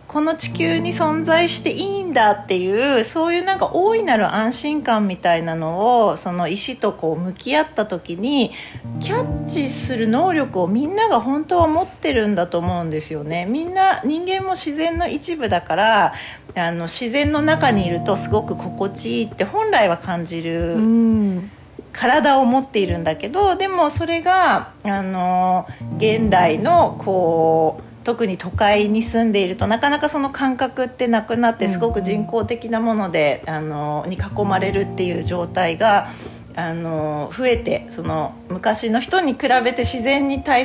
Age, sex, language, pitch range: 40-59, female, Japanese, 185-310 Hz